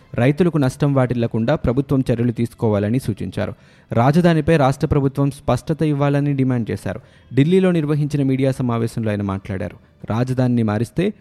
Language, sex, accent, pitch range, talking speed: Telugu, male, native, 115-140 Hz, 120 wpm